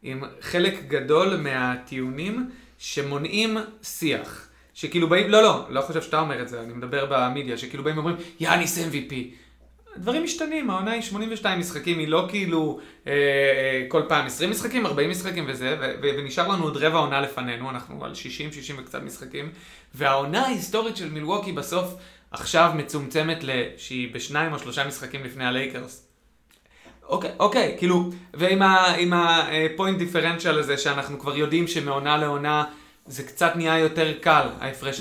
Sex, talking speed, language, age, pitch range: male, 155 wpm, Hebrew, 30-49, 140-180 Hz